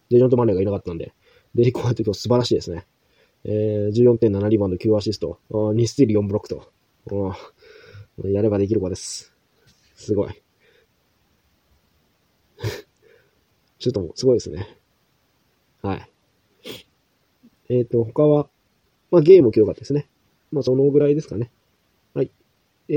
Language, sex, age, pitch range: Japanese, male, 20-39, 105-145 Hz